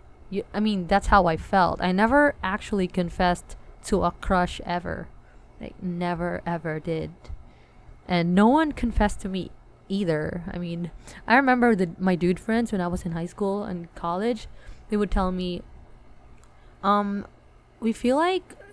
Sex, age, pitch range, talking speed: female, 20-39, 175-215 Hz, 155 wpm